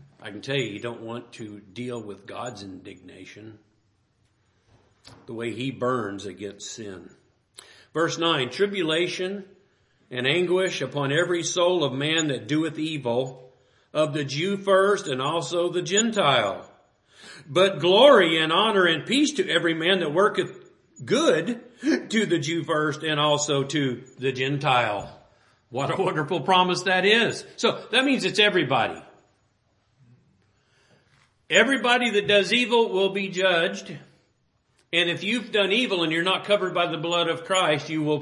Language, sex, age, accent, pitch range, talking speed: English, male, 50-69, American, 120-175 Hz, 150 wpm